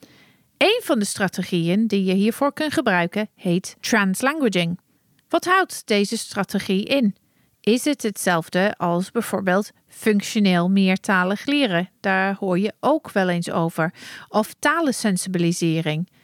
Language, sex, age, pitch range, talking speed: Dutch, female, 40-59, 180-255 Hz, 120 wpm